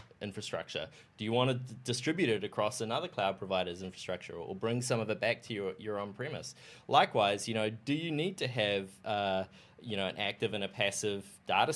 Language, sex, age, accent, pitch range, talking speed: English, male, 20-39, Australian, 95-115 Hz, 195 wpm